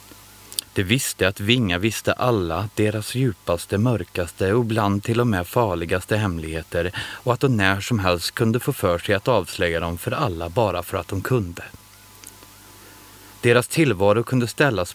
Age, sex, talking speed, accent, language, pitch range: 30-49, male, 160 wpm, native, Swedish, 95-120 Hz